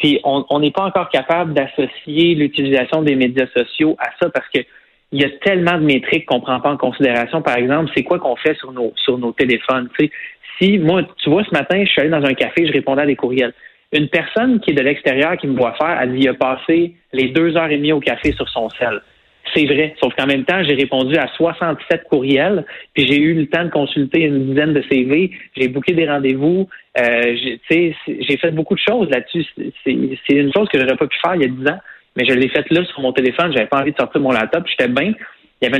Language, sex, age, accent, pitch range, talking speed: French, male, 30-49, Canadian, 130-160 Hz, 255 wpm